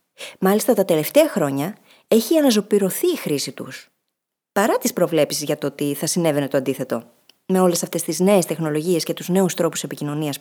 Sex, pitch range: female, 170-240 Hz